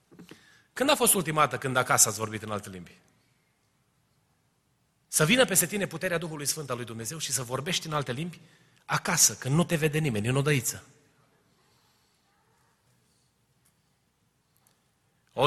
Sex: male